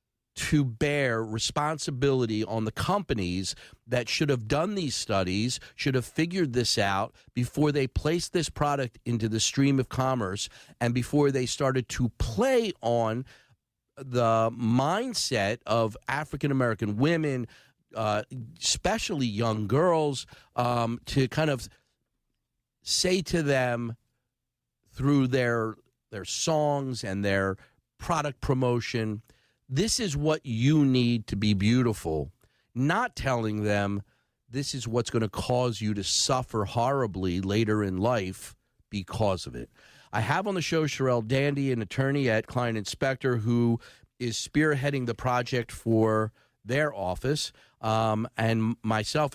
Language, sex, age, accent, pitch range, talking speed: English, male, 50-69, American, 110-140 Hz, 130 wpm